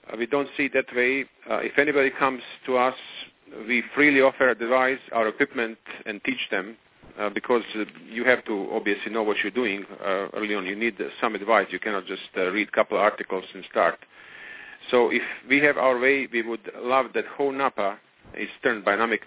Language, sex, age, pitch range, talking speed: English, male, 40-59, 110-130 Hz, 210 wpm